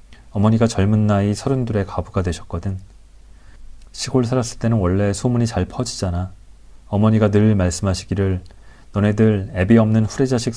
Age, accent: 30-49, native